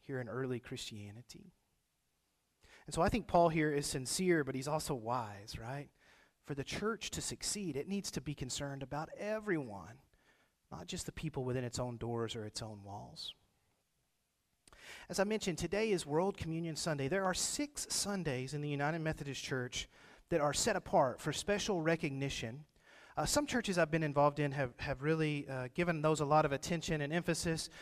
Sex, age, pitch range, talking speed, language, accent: male, 40-59, 135-170 Hz, 180 wpm, English, American